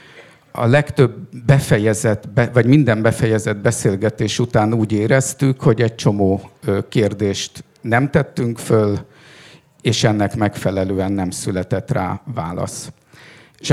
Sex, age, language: male, 50-69, Hungarian